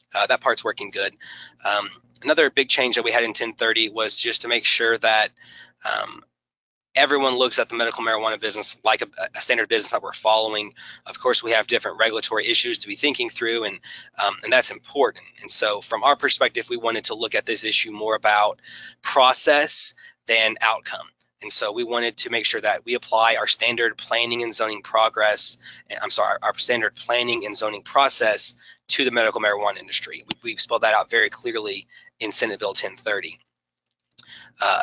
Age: 20-39